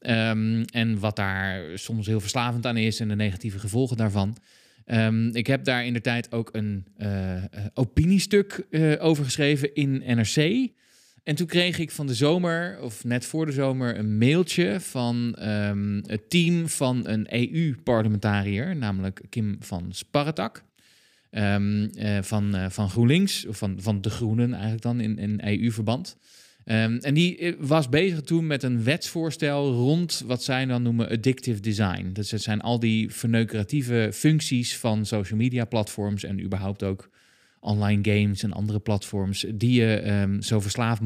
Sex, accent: male, Dutch